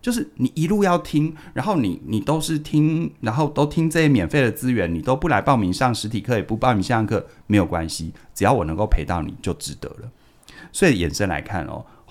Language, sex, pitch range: Chinese, male, 90-130 Hz